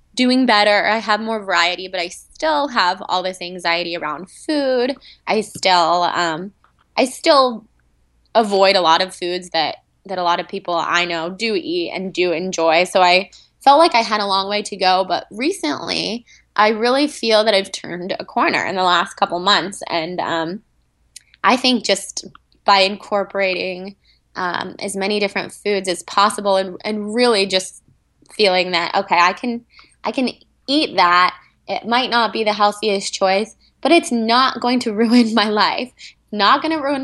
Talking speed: 180 wpm